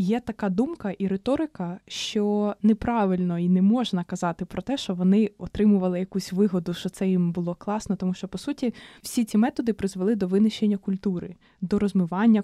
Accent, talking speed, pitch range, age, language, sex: native, 175 wpm, 185-220 Hz, 20-39, Ukrainian, female